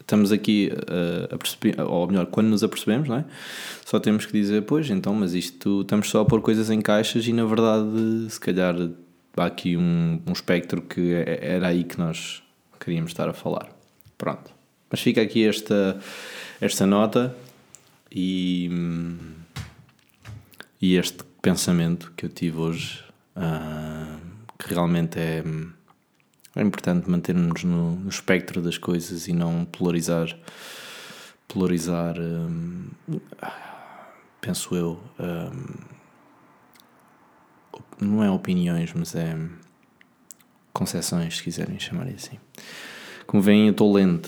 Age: 20-39